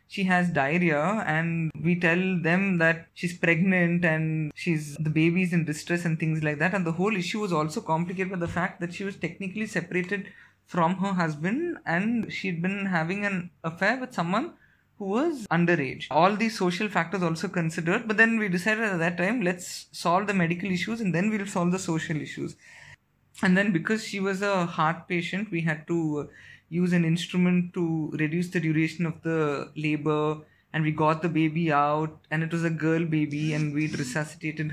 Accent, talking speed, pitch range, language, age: Indian, 190 wpm, 155-180 Hz, English, 20-39